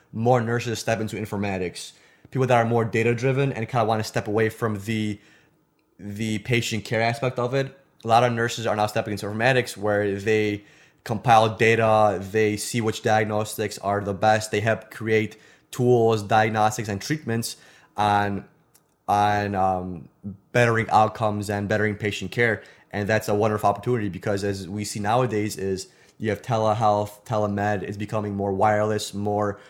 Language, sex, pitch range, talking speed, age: English, male, 105-115 Hz, 165 wpm, 20-39